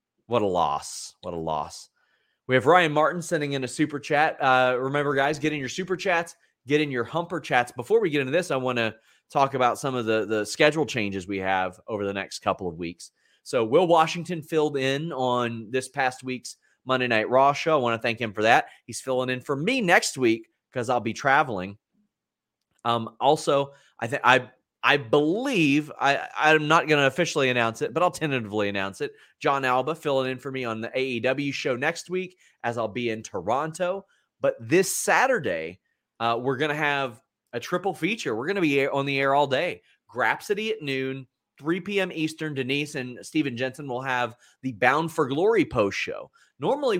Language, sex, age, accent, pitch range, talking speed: English, male, 30-49, American, 125-160 Hz, 200 wpm